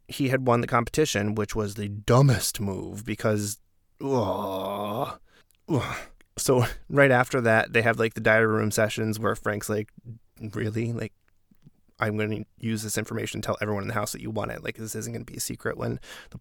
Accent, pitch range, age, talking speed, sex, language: American, 105-130 Hz, 20-39, 200 wpm, male, English